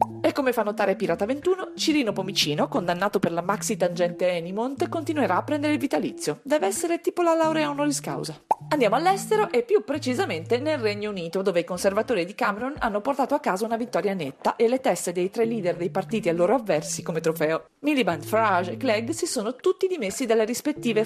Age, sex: 40-59, female